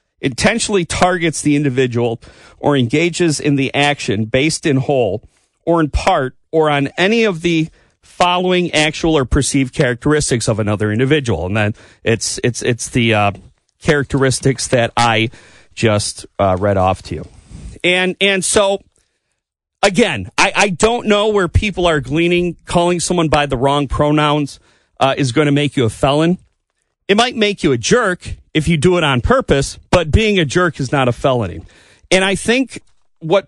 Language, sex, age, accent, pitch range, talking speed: English, male, 40-59, American, 130-180 Hz, 170 wpm